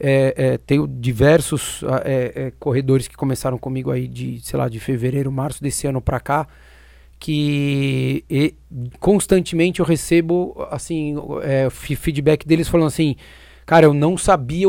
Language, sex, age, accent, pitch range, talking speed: Portuguese, male, 40-59, Brazilian, 130-170 Hz, 125 wpm